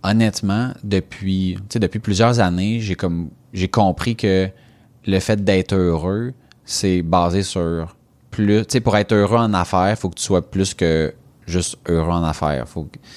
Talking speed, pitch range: 160 wpm, 90-115 Hz